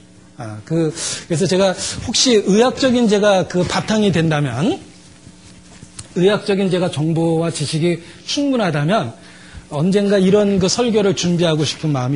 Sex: male